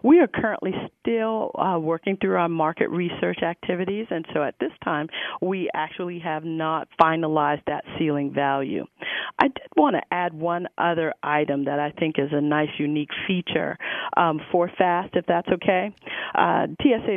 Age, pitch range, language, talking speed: 40-59, 150-175 Hz, English, 165 wpm